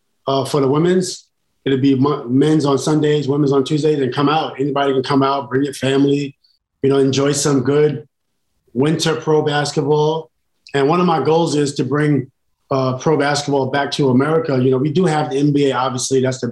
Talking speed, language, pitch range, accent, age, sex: 195 wpm, English, 130-150 Hz, American, 30-49, male